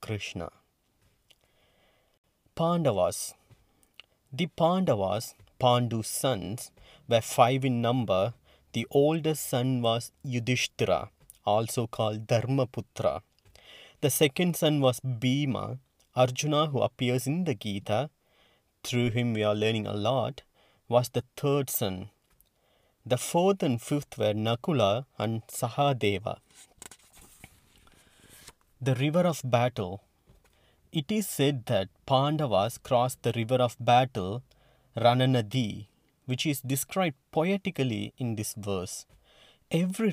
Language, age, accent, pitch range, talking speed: English, 30-49, Indian, 110-145 Hz, 105 wpm